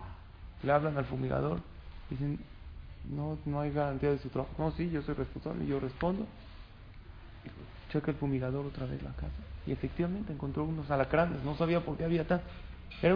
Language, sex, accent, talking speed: Spanish, male, Mexican, 180 wpm